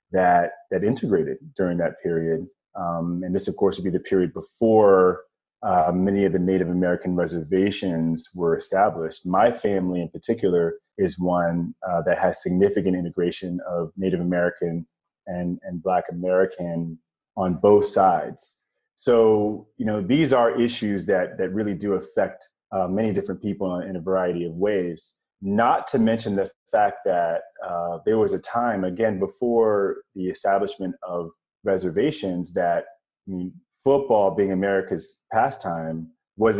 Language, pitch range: English, 85-100 Hz